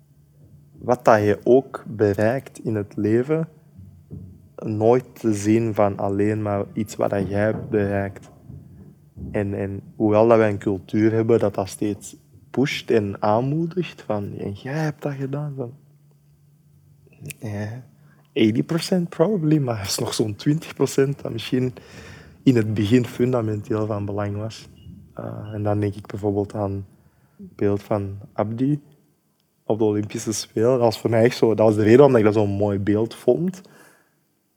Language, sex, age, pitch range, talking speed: Dutch, male, 20-39, 105-135 Hz, 150 wpm